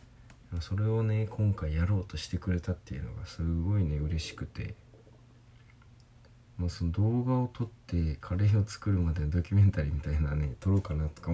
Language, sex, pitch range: Japanese, male, 85-120 Hz